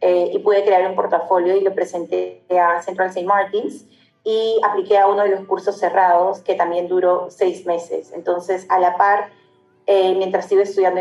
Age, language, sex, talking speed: 30-49, Spanish, female, 185 wpm